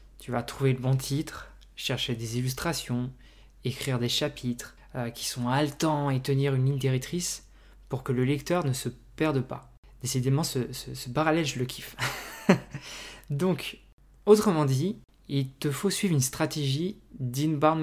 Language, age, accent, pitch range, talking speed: French, 20-39, French, 125-155 Hz, 160 wpm